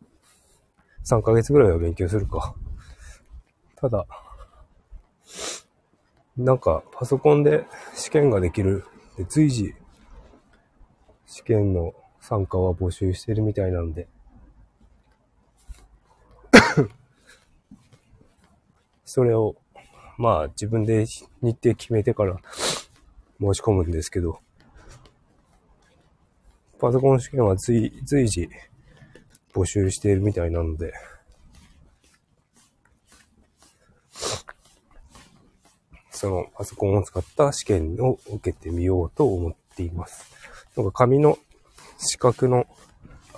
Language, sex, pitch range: Japanese, male, 90-120 Hz